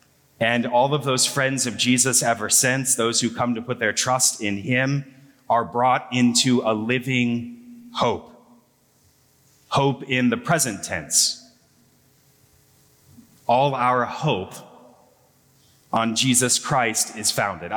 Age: 30-49